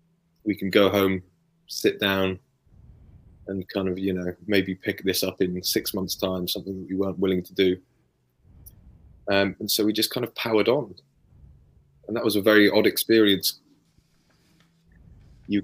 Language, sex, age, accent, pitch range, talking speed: English, male, 20-39, British, 95-110 Hz, 165 wpm